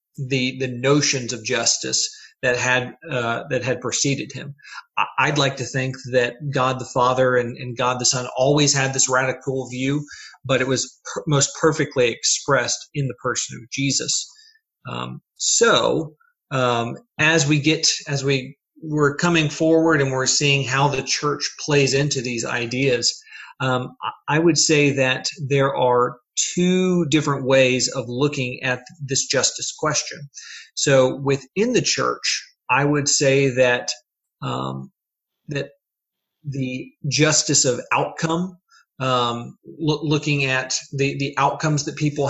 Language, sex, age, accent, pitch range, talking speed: English, male, 40-59, American, 125-150 Hz, 145 wpm